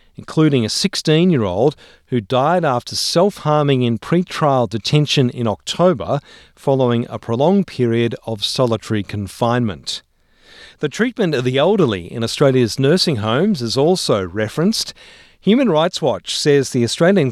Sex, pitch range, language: male, 115-155 Hz, English